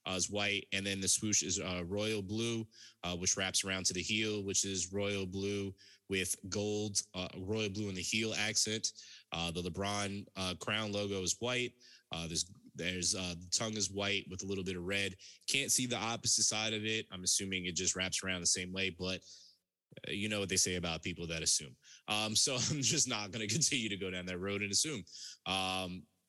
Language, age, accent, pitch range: Finnish, 20-39, American, 90-110 Hz